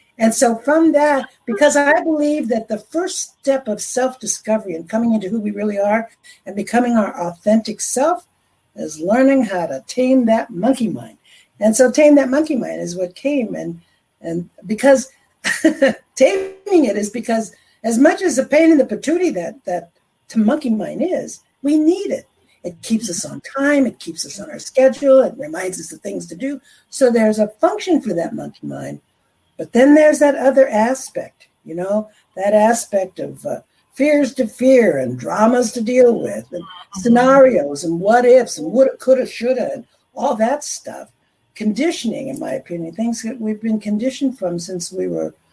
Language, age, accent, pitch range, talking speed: English, 60-79, American, 210-275 Hz, 180 wpm